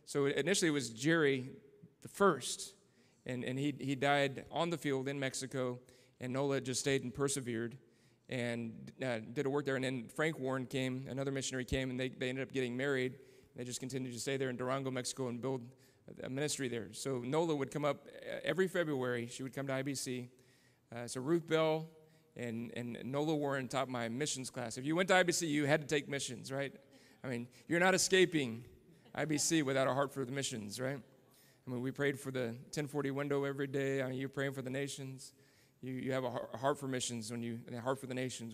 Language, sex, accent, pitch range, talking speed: English, male, American, 125-145 Hz, 215 wpm